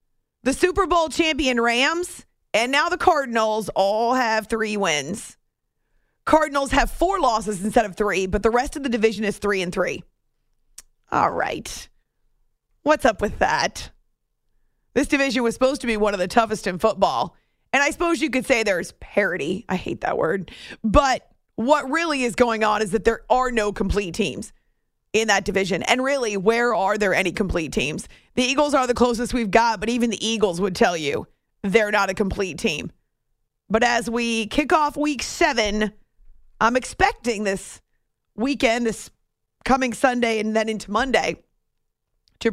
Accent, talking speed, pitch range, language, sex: American, 170 wpm, 215-275 Hz, English, female